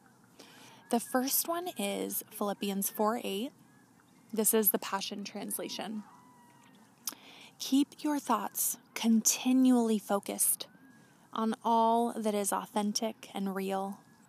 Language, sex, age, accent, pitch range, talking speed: English, female, 20-39, American, 205-240 Hz, 95 wpm